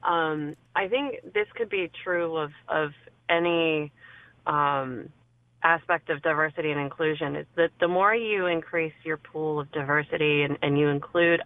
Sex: female